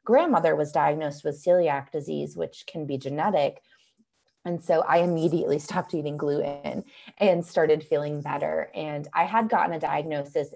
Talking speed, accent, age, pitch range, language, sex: 155 wpm, American, 20-39, 150-195 Hz, English, female